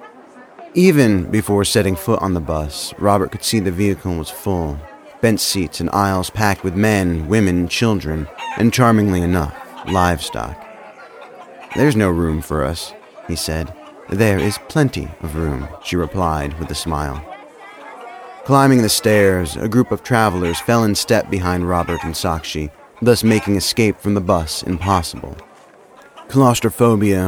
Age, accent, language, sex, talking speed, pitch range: 30-49, American, English, male, 145 wpm, 80-105 Hz